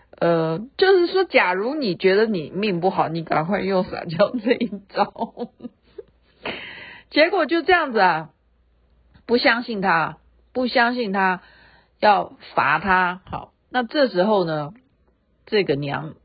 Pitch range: 155-225 Hz